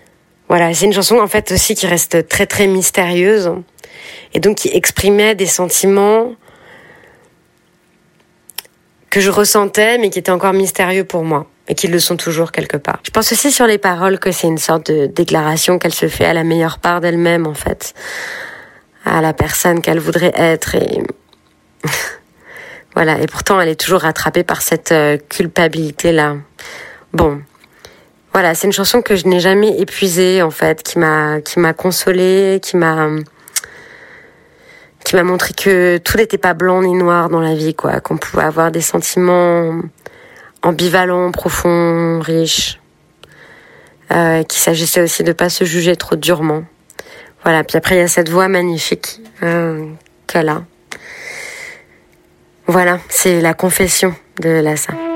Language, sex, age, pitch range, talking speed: French, female, 30-49, 165-195 Hz, 155 wpm